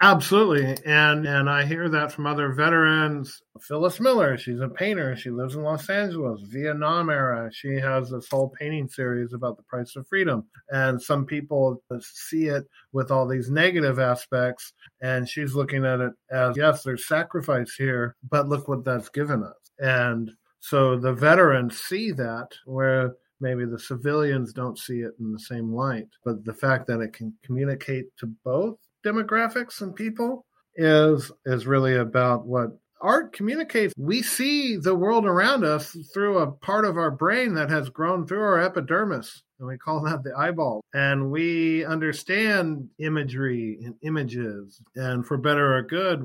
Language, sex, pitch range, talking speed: English, male, 125-155 Hz, 165 wpm